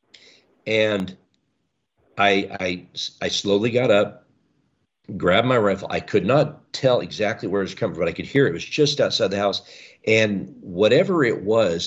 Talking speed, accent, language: 175 wpm, American, English